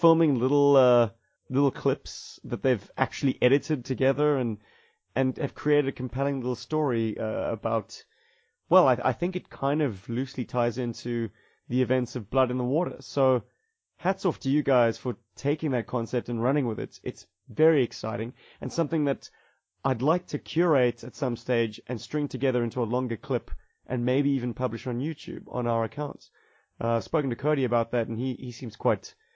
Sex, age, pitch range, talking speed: male, 30-49, 115-140 Hz, 190 wpm